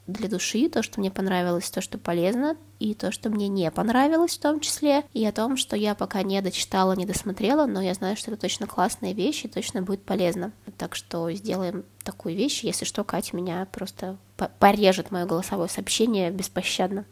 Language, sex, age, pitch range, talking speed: Russian, female, 20-39, 185-240 Hz, 195 wpm